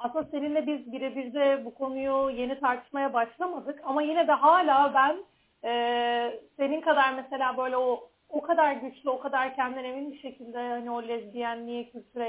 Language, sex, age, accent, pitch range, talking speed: Turkish, female, 40-59, native, 235-290 Hz, 170 wpm